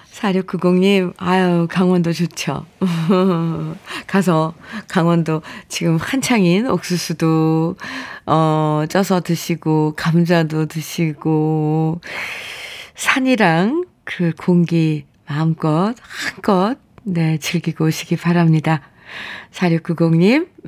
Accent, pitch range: native, 165-215 Hz